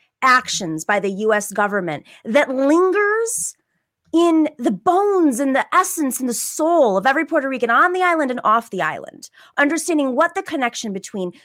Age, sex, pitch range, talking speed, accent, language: 20-39, female, 210-330 Hz, 170 wpm, American, English